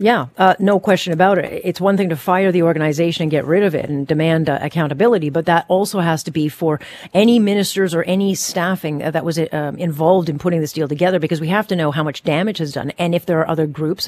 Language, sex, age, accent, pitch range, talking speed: English, female, 40-59, American, 160-190 Hz, 250 wpm